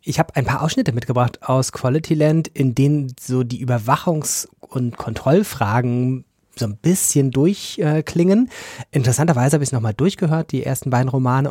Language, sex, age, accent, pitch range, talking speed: German, male, 30-49, German, 120-150 Hz, 155 wpm